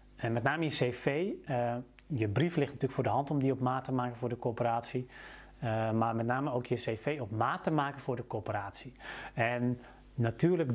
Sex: male